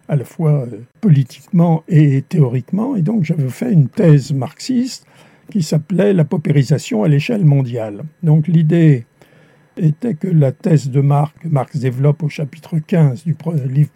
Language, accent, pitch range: French, French, 140-170 Hz